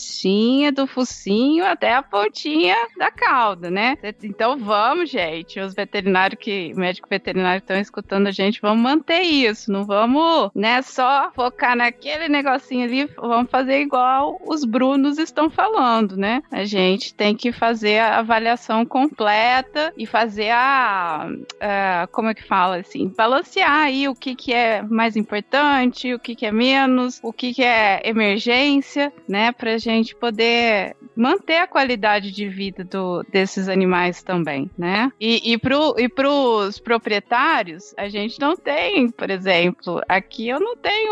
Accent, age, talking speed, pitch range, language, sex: Brazilian, 20-39, 155 wpm, 195-260 Hz, Portuguese, female